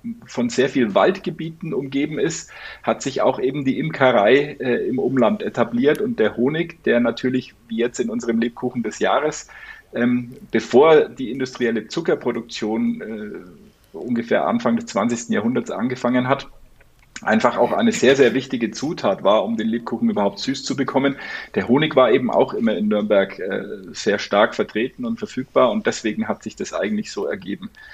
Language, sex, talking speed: German, male, 165 wpm